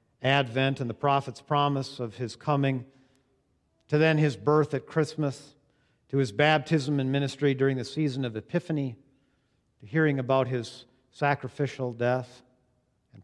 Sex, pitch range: male, 115-140 Hz